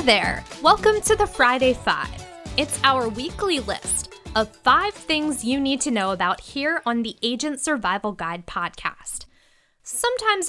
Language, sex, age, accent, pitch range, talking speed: English, female, 10-29, American, 200-275 Hz, 155 wpm